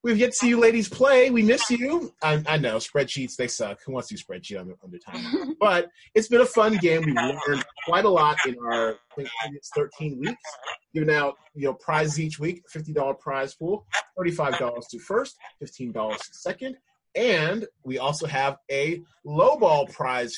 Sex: male